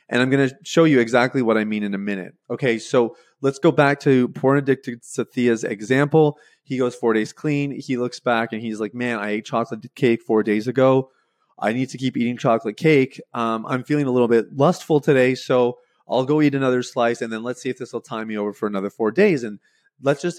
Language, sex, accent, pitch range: English, male, American, 110-145 Hz